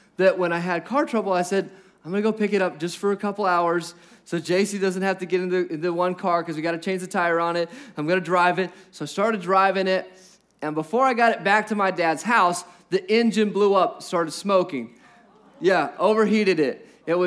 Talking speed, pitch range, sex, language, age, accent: 240 wpm, 175-220 Hz, male, English, 20-39, American